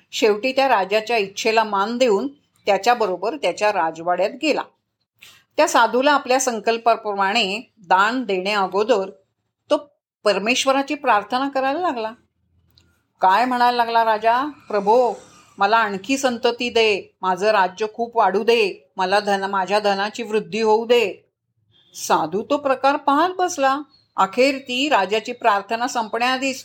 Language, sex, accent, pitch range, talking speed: Marathi, female, native, 210-285 Hz, 120 wpm